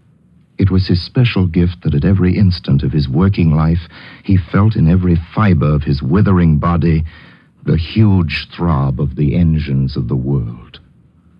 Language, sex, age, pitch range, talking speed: English, male, 60-79, 70-95 Hz, 165 wpm